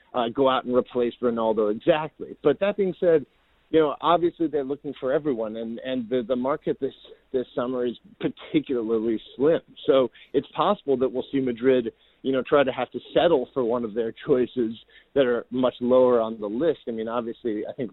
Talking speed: 200 wpm